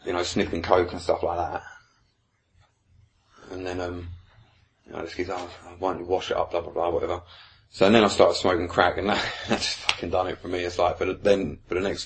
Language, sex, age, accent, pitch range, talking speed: English, male, 30-49, British, 90-105 Hz, 240 wpm